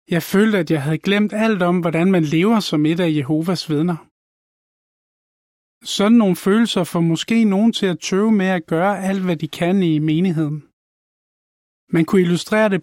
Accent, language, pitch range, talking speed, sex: native, Danish, 160-195 Hz, 180 wpm, male